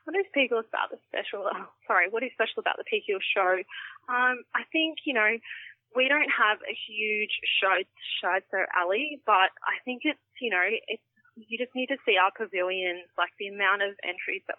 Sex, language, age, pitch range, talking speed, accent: female, English, 20-39, 185-235 Hz, 200 wpm, Australian